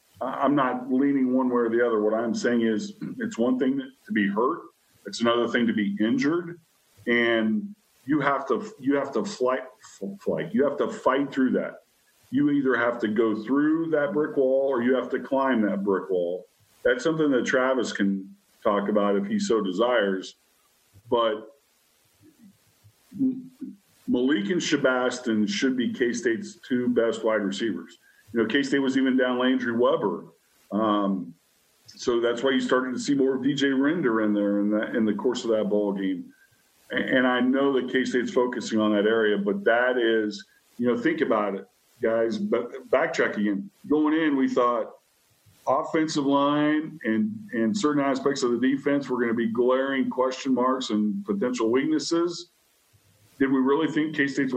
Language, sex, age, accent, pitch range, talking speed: English, male, 50-69, American, 110-140 Hz, 175 wpm